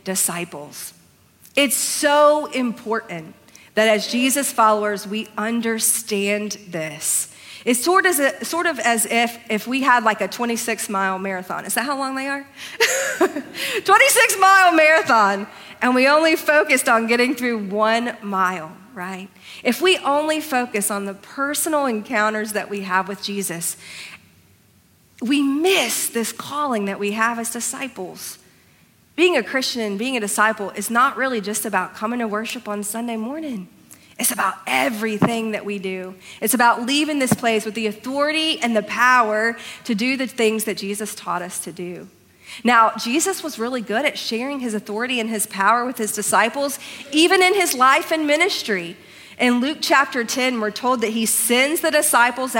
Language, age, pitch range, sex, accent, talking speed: English, 40-59, 210-275 Hz, female, American, 160 wpm